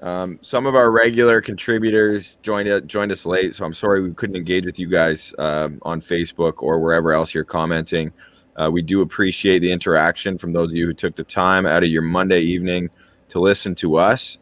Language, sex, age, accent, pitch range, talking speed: English, male, 20-39, American, 85-95 Hz, 210 wpm